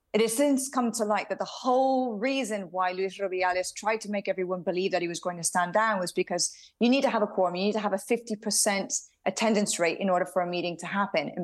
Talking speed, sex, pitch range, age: 255 wpm, female, 180-230 Hz, 30-49